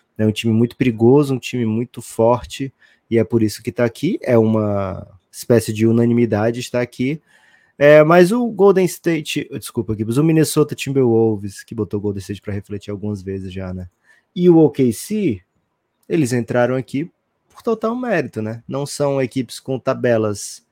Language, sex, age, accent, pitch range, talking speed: Portuguese, male, 20-39, Brazilian, 105-135 Hz, 170 wpm